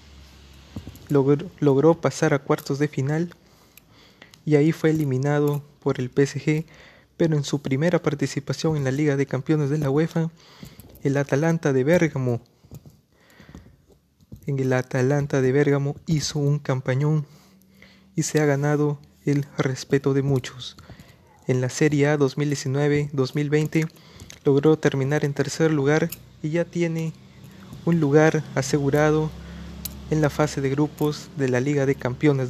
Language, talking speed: Spanish, 135 wpm